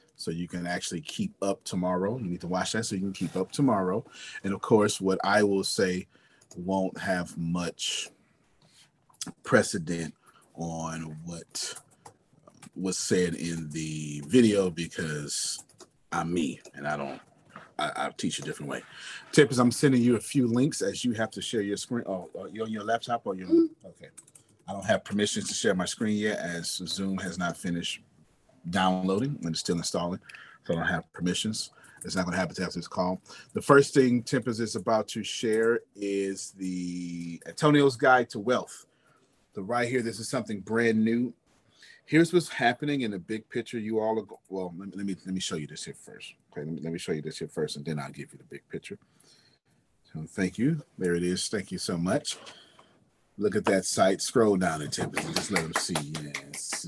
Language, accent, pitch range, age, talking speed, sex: English, American, 85-120 Hz, 30-49, 195 wpm, male